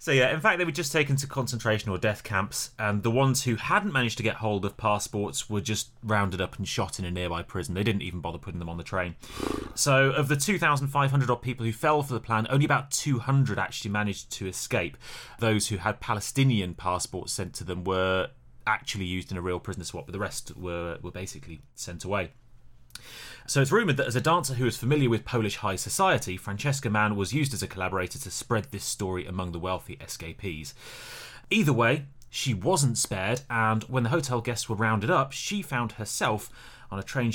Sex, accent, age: male, British, 30-49